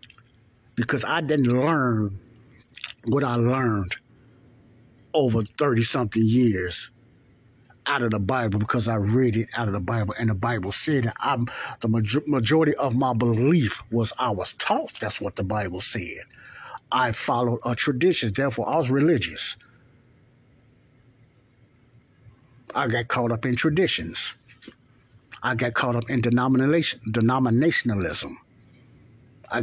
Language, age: English, 60-79